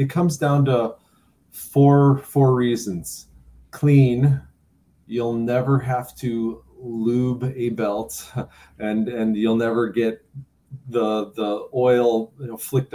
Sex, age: male, 30-49